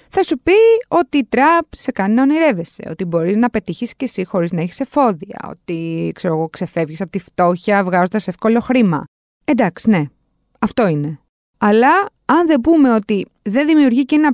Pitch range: 195-285 Hz